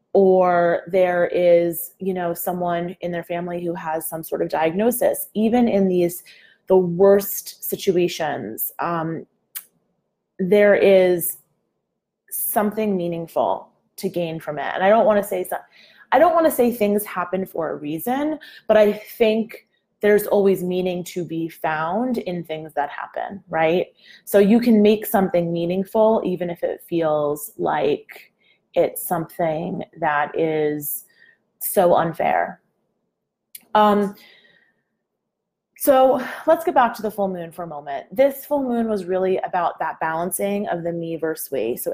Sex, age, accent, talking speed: female, 20-39, American, 145 wpm